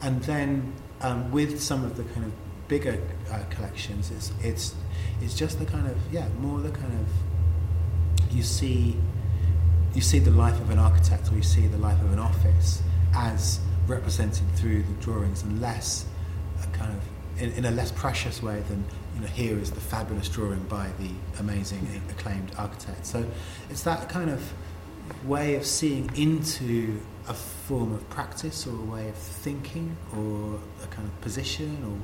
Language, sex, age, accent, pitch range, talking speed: English, male, 30-49, British, 90-120 Hz, 175 wpm